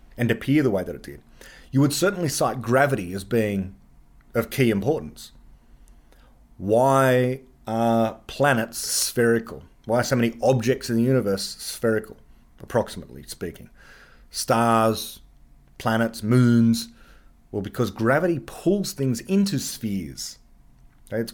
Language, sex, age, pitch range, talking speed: English, male, 30-49, 95-130 Hz, 120 wpm